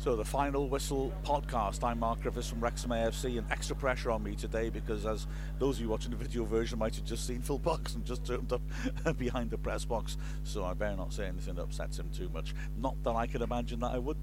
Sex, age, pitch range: male, 50-69, 115-150 Hz